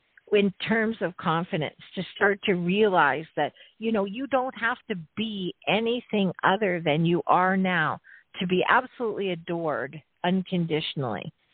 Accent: American